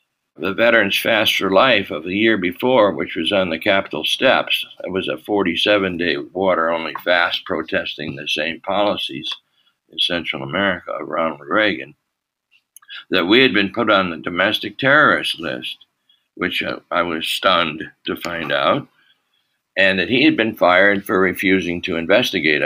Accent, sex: American, male